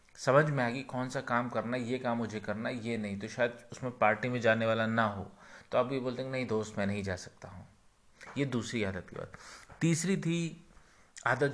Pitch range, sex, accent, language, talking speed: 110-140 Hz, male, native, Hindi, 230 wpm